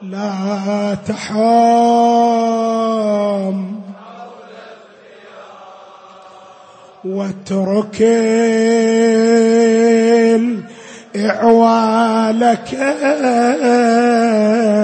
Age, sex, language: 20-39, male, Arabic